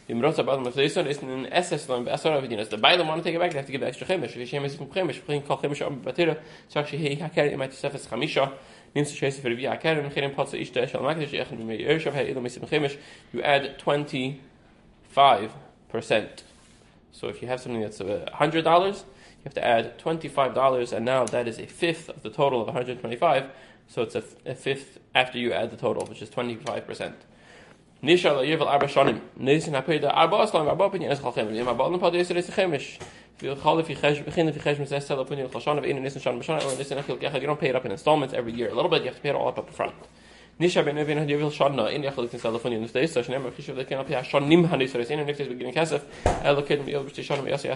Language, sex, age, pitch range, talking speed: English, male, 20-39, 125-150 Hz, 80 wpm